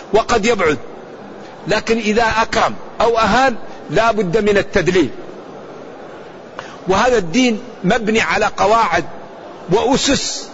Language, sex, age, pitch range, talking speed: Arabic, male, 50-69, 215-240 Hz, 90 wpm